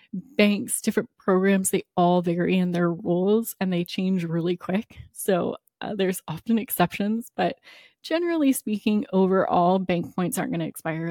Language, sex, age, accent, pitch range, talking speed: English, female, 20-39, American, 175-210 Hz, 155 wpm